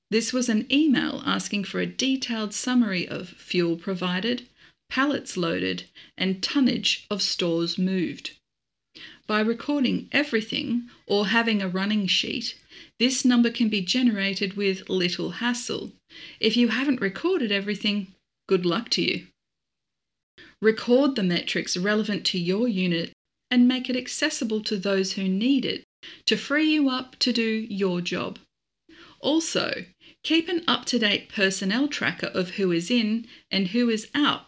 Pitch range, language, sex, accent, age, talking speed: 190-250 Hz, English, female, Australian, 40-59, 145 wpm